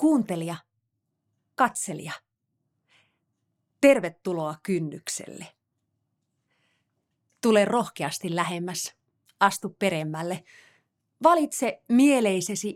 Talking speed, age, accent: 50 wpm, 30-49, native